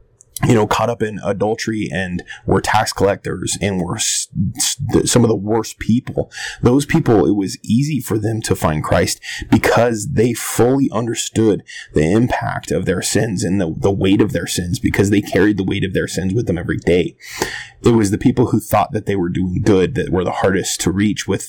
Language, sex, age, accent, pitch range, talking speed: English, male, 20-39, American, 100-120 Hz, 210 wpm